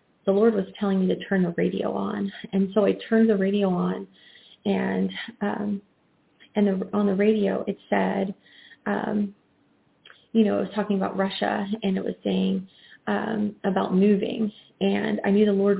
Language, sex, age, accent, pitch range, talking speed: English, female, 30-49, American, 185-210 Hz, 175 wpm